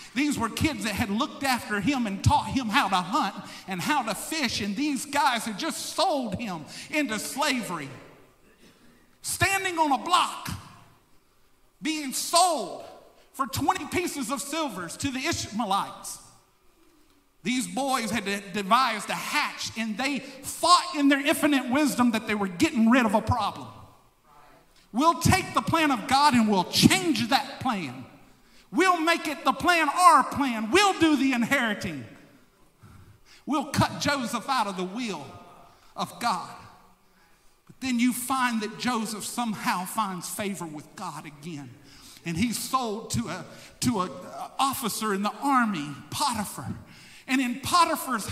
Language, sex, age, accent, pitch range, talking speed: English, male, 50-69, American, 200-285 Hz, 150 wpm